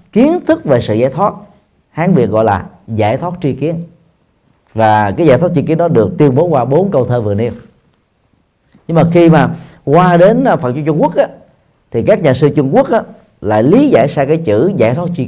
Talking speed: 225 wpm